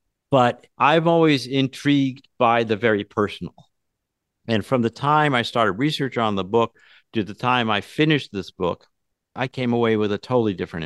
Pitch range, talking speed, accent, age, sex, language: 100-130 Hz, 175 wpm, American, 50-69, male, English